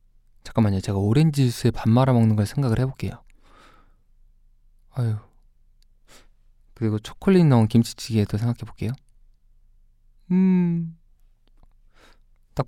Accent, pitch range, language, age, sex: native, 110-135 Hz, Korean, 20-39, male